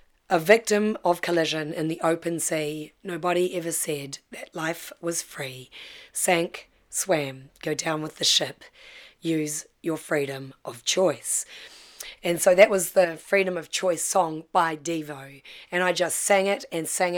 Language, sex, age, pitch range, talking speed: English, female, 30-49, 155-180 Hz, 155 wpm